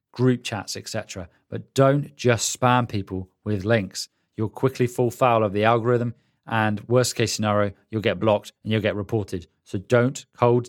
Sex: male